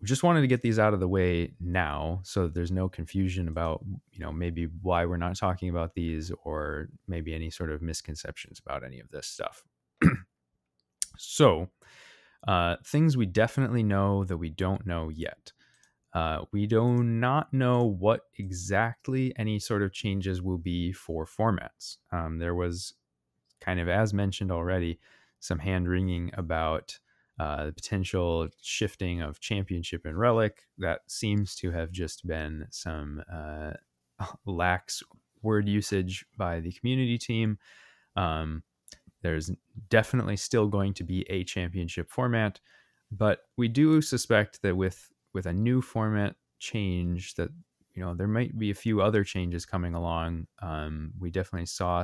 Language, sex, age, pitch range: English, male, 20-39, 85-105 Hz